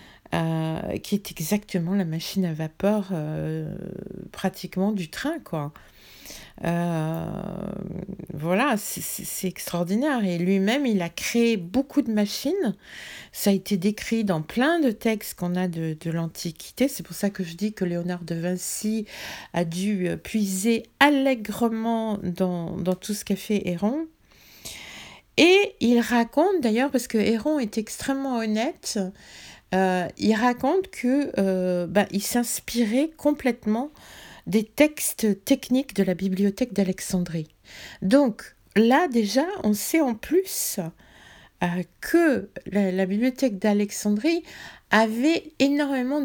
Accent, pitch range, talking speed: French, 185-255 Hz, 130 wpm